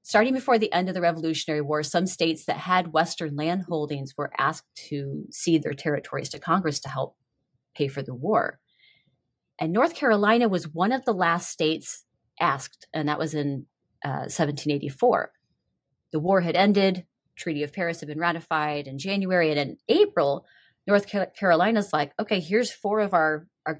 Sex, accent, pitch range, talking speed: female, American, 150-215 Hz, 175 wpm